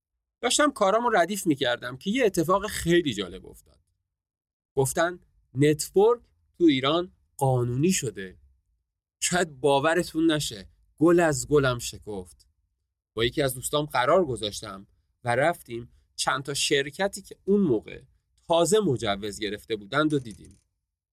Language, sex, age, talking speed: Persian, male, 30-49, 120 wpm